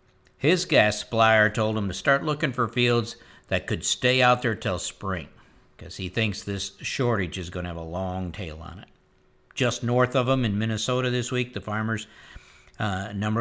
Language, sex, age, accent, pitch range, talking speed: English, male, 50-69, American, 105-130 Hz, 195 wpm